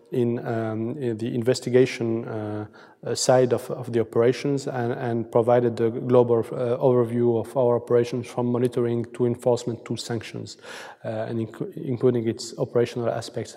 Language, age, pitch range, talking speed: English, 30-49, 120-140 Hz, 150 wpm